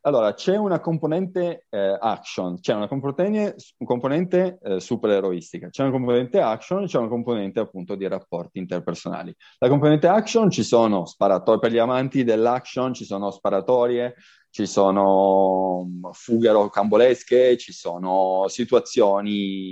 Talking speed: 130 wpm